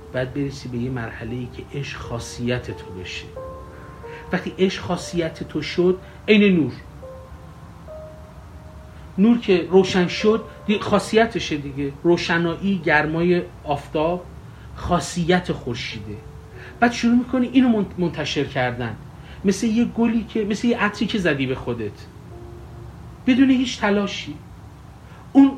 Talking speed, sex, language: 120 wpm, male, Persian